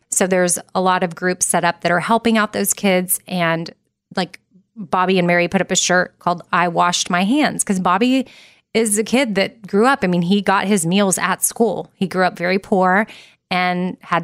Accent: American